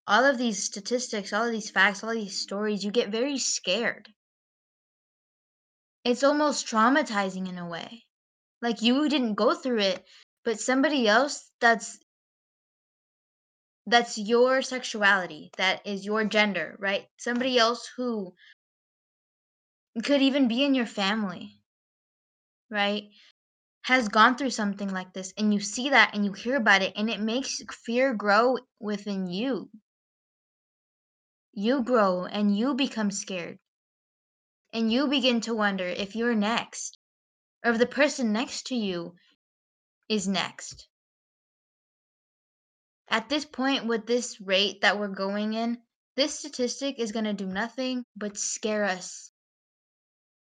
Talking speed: 135 wpm